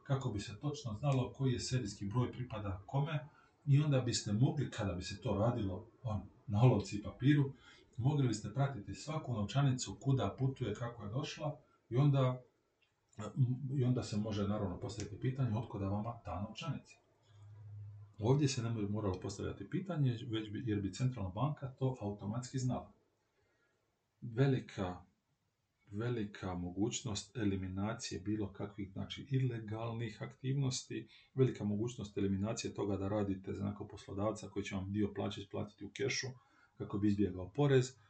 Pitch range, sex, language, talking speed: 100-130 Hz, male, Croatian, 150 wpm